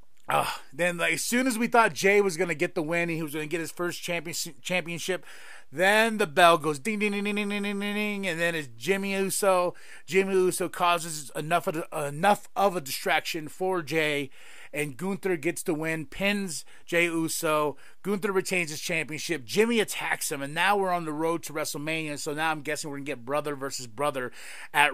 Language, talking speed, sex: English, 210 wpm, male